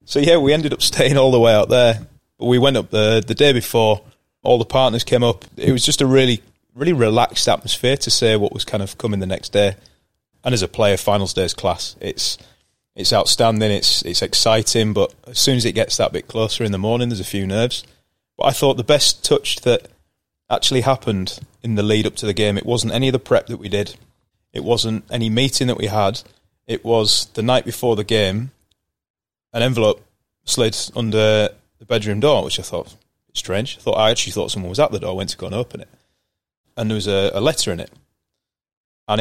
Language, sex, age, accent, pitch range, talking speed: English, male, 30-49, British, 105-120 Hz, 220 wpm